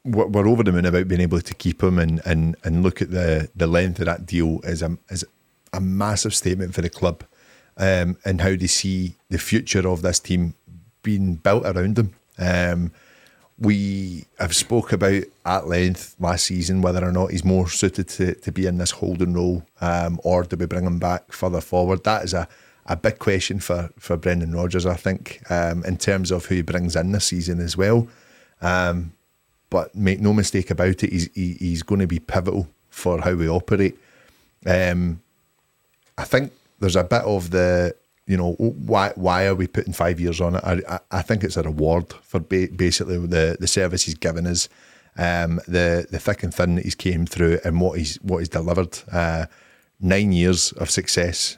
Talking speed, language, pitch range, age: 200 wpm, English, 85-95 Hz, 30-49